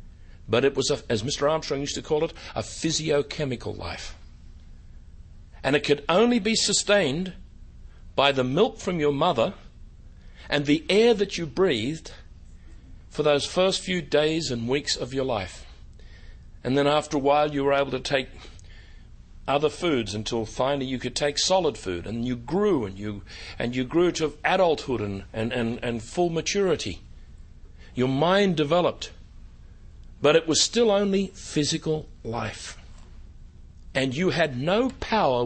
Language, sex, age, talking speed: English, male, 60-79, 150 wpm